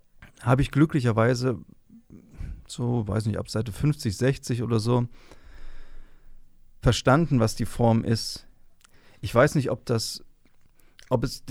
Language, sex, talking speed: German, male, 115 wpm